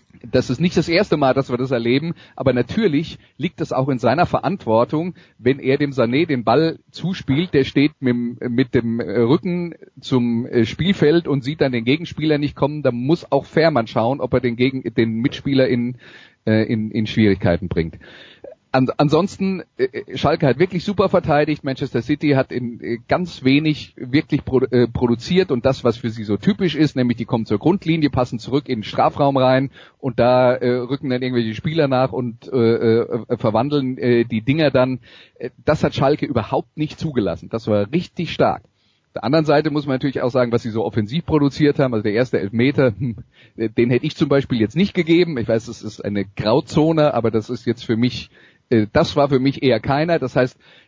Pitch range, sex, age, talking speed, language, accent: 120-150 Hz, male, 30-49, 180 wpm, German, German